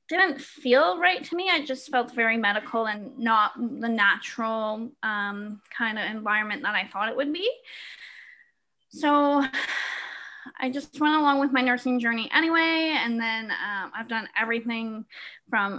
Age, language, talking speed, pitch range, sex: 20-39, English, 155 wpm, 225-290 Hz, female